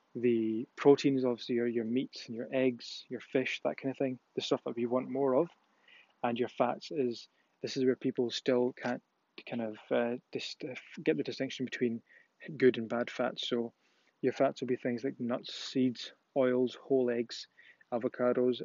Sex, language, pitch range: male, English, 125-140 Hz